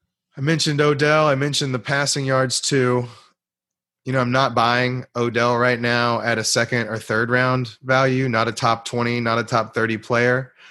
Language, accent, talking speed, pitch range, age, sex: English, American, 185 wpm, 105-125 Hz, 30-49, male